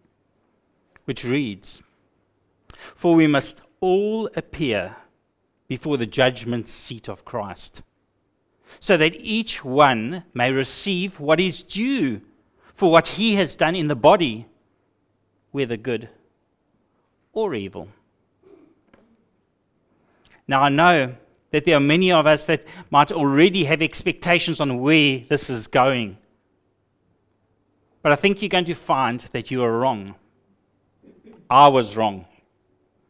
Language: English